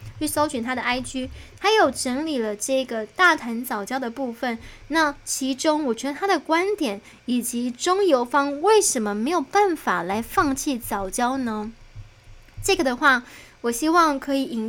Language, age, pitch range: Chinese, 10-29, 225-305 Hz